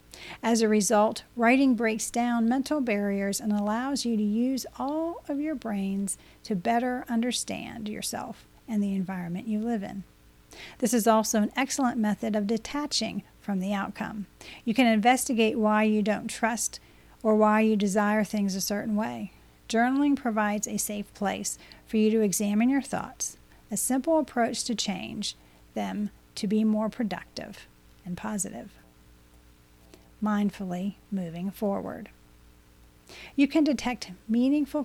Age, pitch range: 40-59, 205-240 Hz